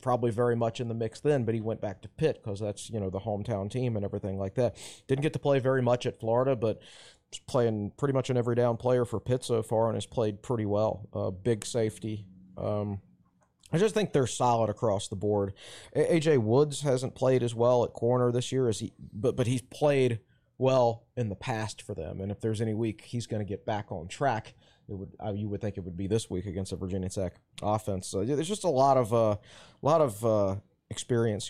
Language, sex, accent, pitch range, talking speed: English, male, American, 105-130 Hz, 235 wpm